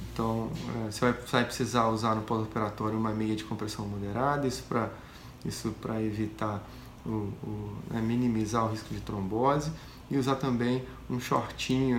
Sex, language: male, Portuguese